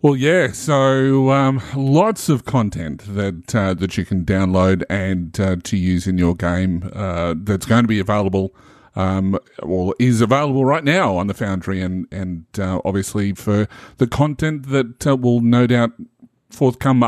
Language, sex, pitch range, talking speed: English, male, 95-130 Hz, 170 wpm